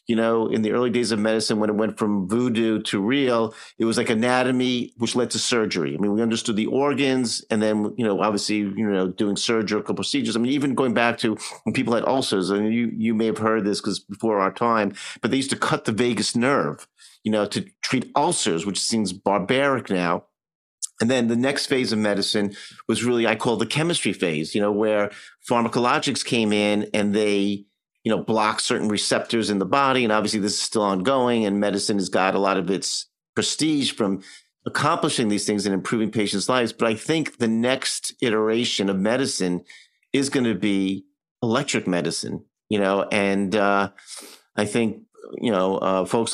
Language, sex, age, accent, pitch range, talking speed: English, male, 50-69, American, 100-120 Hz, 200 wpm